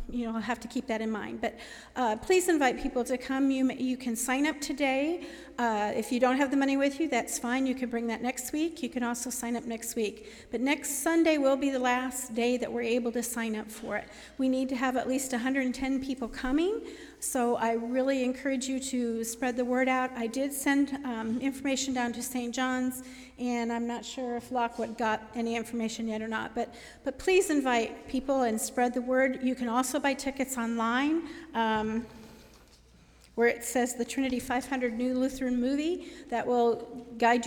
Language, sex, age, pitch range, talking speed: English, female, 50-69, 235-270 Hz, 205 wpm